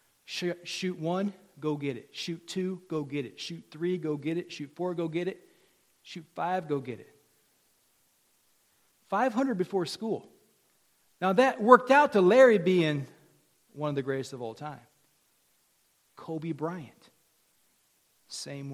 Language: English